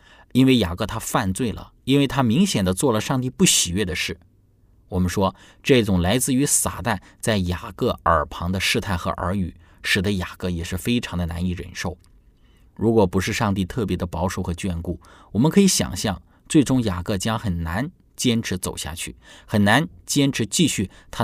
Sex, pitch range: male, 90-110 Hz